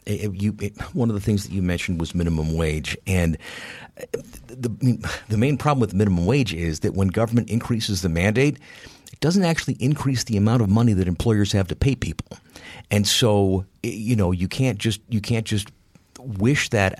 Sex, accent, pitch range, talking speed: male, American, 95-120 Hz, 200 wpm